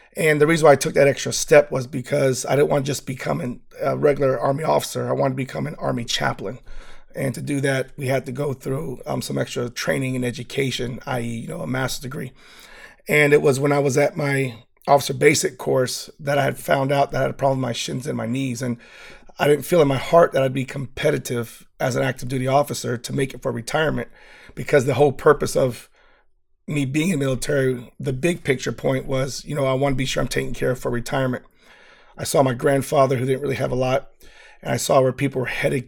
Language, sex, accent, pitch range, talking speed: English, male, American, 130-145 Hz, 235 wpm